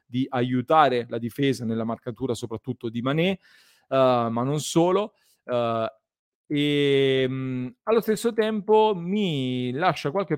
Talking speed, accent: 125 wpm, native